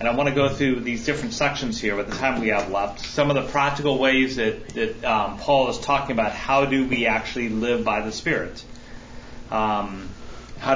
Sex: male